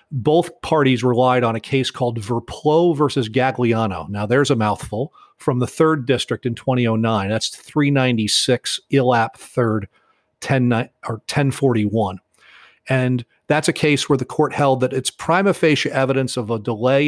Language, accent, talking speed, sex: English, American, 145 wpm, male